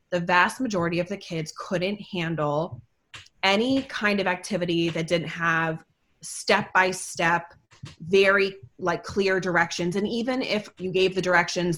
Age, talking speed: 20-39, 150 wpm